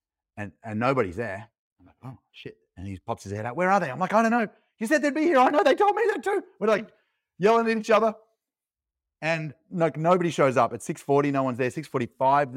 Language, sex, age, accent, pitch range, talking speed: English, male, 30-49, Australian, 115-165 Hz, 240 wpm